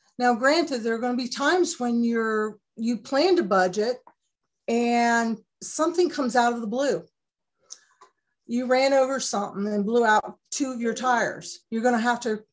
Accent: American